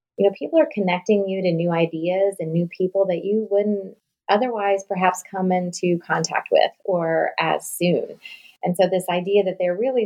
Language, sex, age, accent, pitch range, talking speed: English, female, 30-49, American, 160-190 Hz, 185 wpm